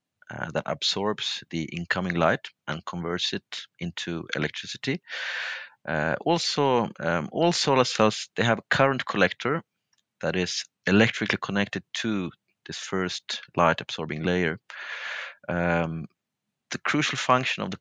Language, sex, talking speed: English, male, 125 wpm